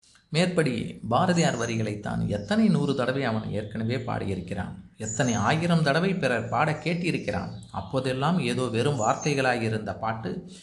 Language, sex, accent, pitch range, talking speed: Tamil, male, native, 110-135 Hz, 125 wpm